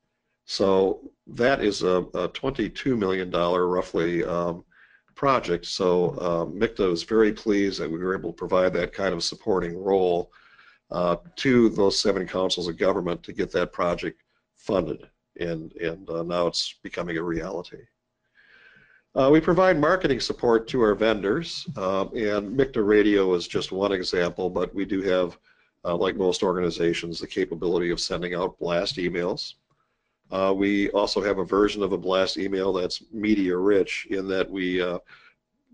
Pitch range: 90-100 Hz